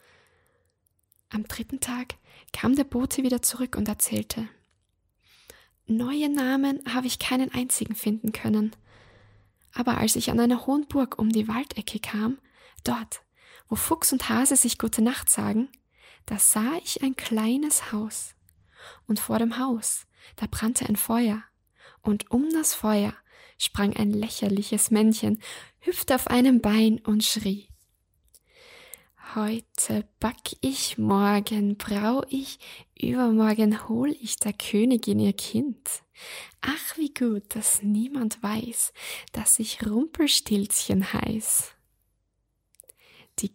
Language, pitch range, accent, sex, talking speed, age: German, 205-250 Hz, German, female, 125 wpm, 10-29